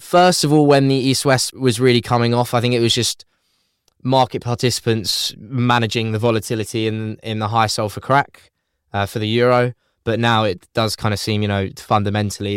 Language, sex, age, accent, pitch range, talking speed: English, male, 10-29, British, 100-115 Hz, 190 wpm